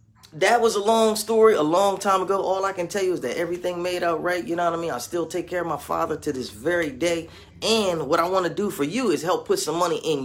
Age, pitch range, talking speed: 30-49, 160-215 Hz, 295 wpm